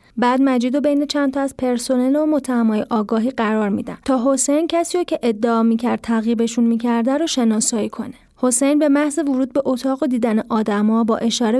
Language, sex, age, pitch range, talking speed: Persian, female, 30-49, 230-290 Hz, 180 wpm